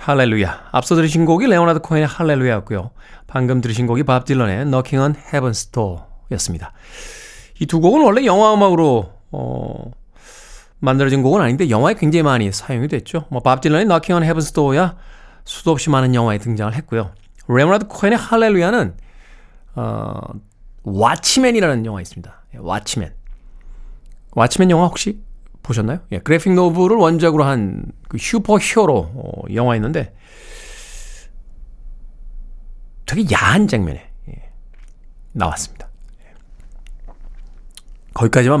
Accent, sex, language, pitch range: native, male, Korean, 115-165 Hz